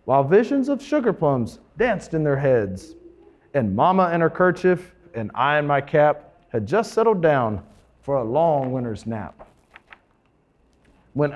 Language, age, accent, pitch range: English, 40-59, American, 135-205 Hz